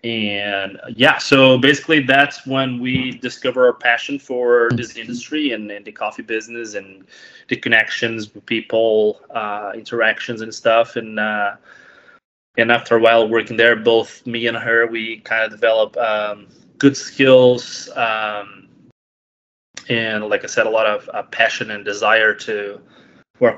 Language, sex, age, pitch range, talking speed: English, male, 20-39, 110-130 Hz, 155 wpm